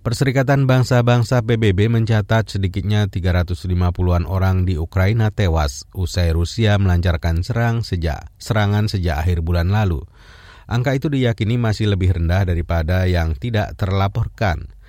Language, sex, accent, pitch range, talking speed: Indonesian, male, native, 90-115 Hz, 120 wpm